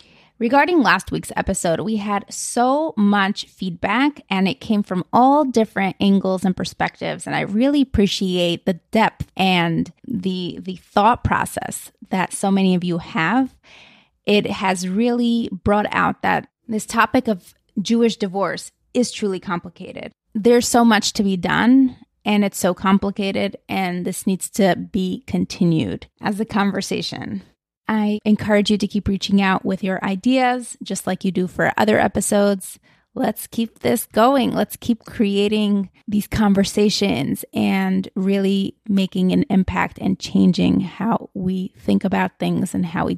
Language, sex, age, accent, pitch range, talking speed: English, female, 20-39, American, 190-225 Hz, 150 wpm